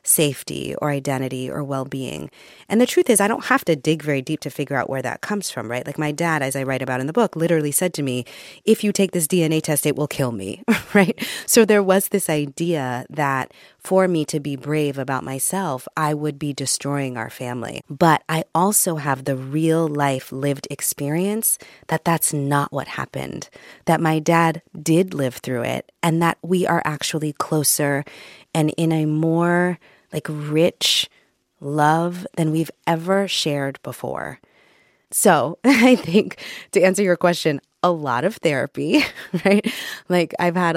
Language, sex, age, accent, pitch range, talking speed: English, female, 30-49, American, 140-170 Hz, 180 wpm